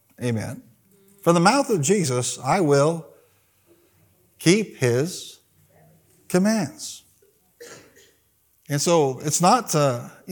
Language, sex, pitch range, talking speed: English, male, 130-185 Hz, 95 wpm